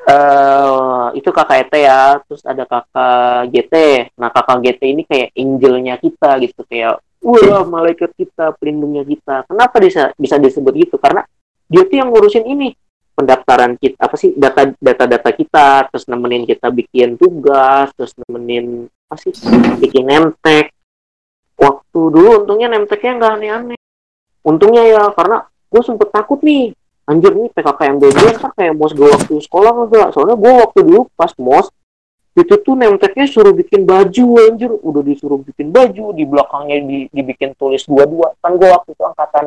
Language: Indonesian